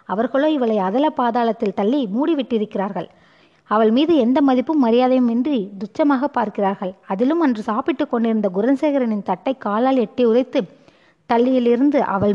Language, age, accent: Tamil, 20-39, native